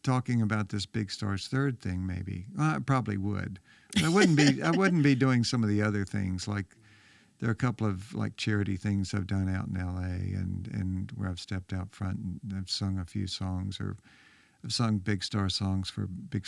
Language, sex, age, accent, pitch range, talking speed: English, male, 50-69, American, 95-120 Hz, 210 wpm